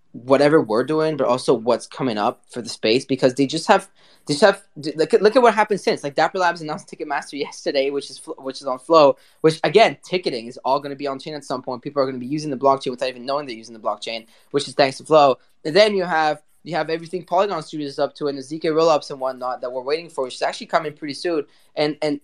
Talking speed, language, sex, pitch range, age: 265 wpm, English, male, 140-175 Hz, 20-39